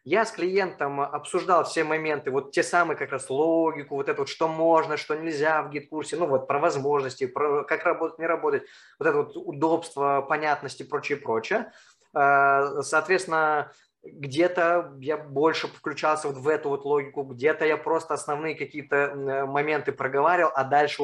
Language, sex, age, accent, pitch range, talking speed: Russian, male, 20-39, native, 145-175 Hz, 155 wpm